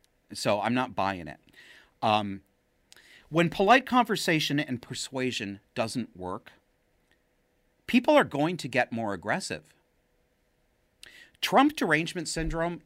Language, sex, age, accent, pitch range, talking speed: English, male, 40-59, American, 95-140 Hz, 105 wpm